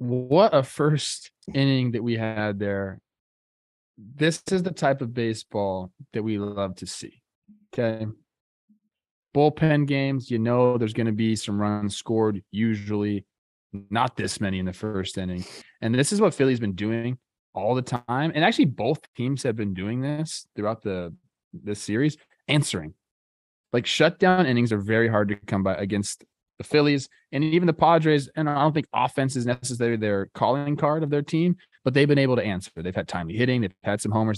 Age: 20-39